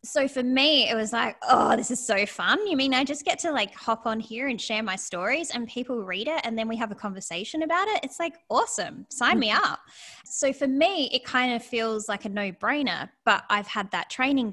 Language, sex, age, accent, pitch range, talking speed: English, female, 10-29, Australian, 195-250 Hz, 240 wpm